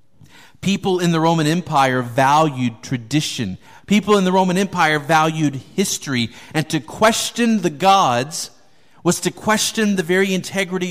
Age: 40-59